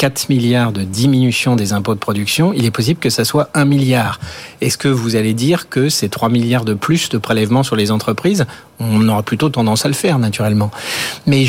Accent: French